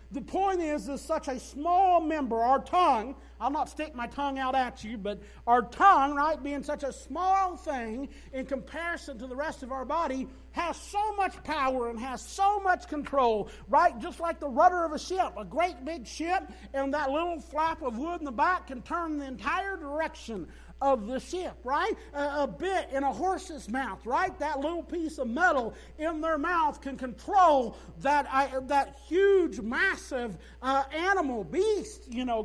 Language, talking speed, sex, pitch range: English, 190 wpm, male, 190-305 Hz